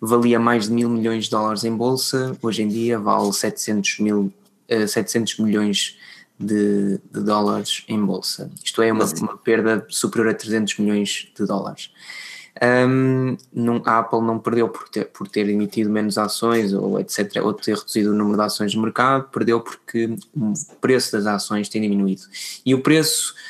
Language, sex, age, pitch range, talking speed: Portuguese, male, 20-39, 105-125 Hz, 165 wpm